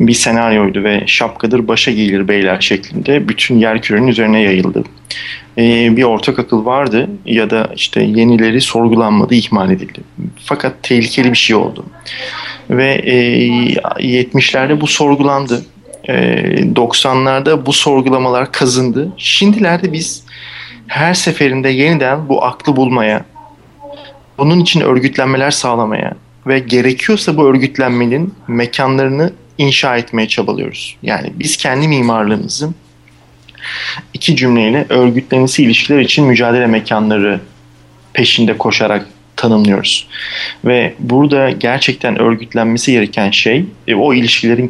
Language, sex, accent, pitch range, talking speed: Turkish, male, native, 110-135 Hz, 110 wpm